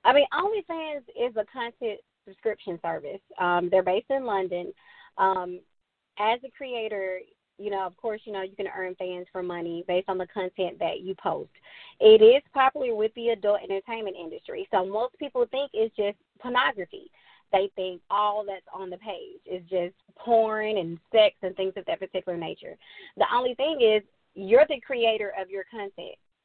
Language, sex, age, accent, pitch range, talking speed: English, female, 20-39, American, 195-275 Hz, 180 wpm